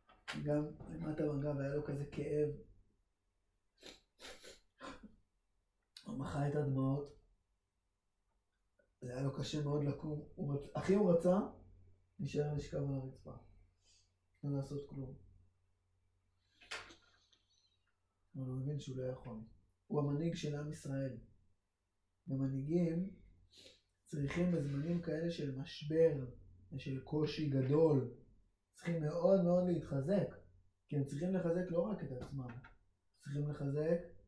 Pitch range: 100-150 Hz